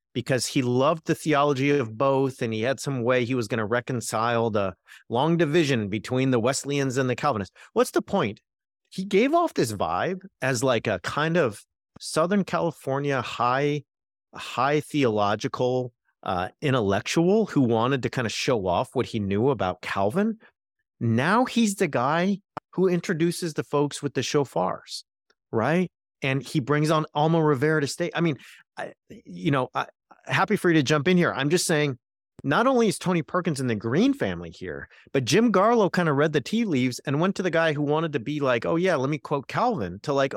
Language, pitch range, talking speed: English, 120-170 Hz, 195 wpm